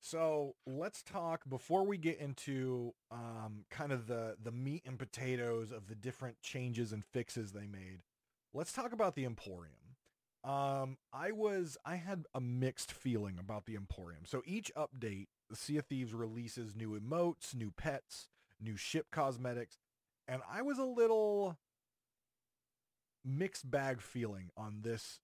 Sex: male